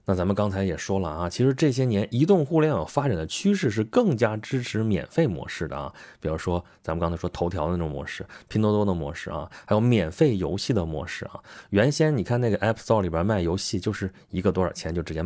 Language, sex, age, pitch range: Chinese, male, 30-49, 95-150 Hz